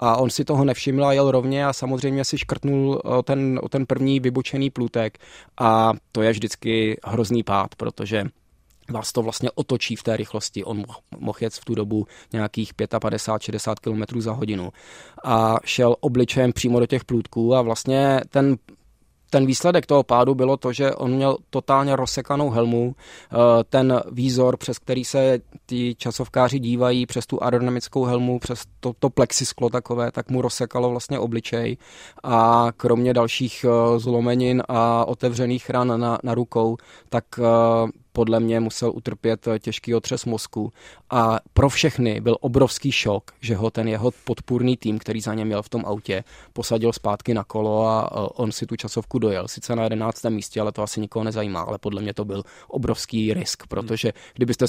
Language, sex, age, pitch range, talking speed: Czech, male, 20-39, 110-125 Hz, 170 wpm